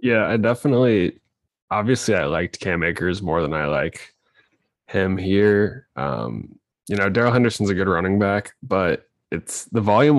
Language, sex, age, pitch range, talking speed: English, male, 20-39, 90-100 Hz, 160 wpm